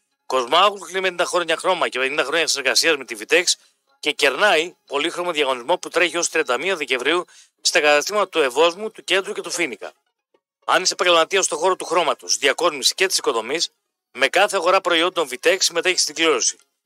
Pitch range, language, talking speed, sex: 165-205 Hz, Greek, 180 wpm, male